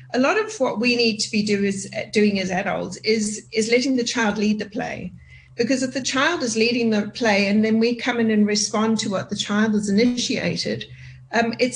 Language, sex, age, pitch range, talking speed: English, female, 40-59, 205-250 Hz, 225 wpm